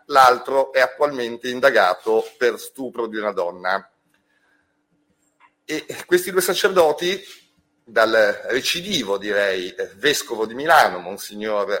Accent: native